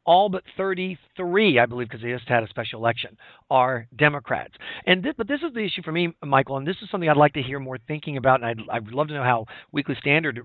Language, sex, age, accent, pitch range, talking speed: English, male, 50-69, American, 120-165 Hz, 255 wpm